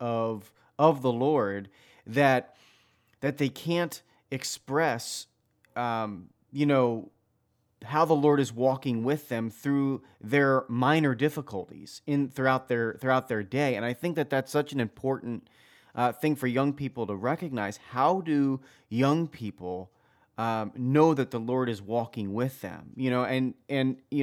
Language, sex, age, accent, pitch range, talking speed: English, male, 30-49, American, 115-140 Hz, 155 wpm